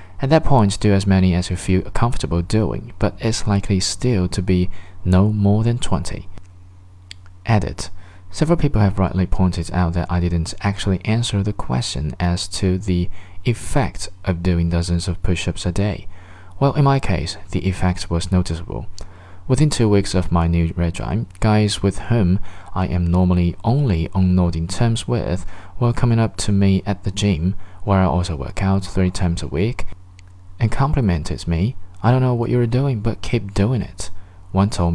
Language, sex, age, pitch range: Chinese, male, 20-39, 90-105 Hz